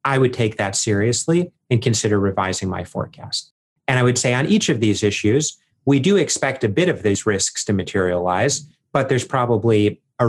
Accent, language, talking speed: American, English, 190 wpm